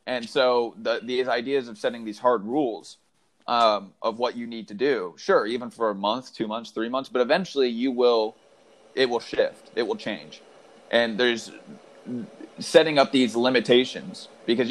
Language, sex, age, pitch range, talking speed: English, male, 30-49, 110-135 Hz, 175 wpm